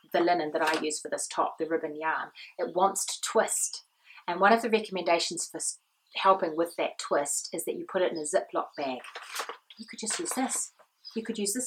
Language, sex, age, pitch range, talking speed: English, female, 30-49, 170-225 Hz, 220 wpm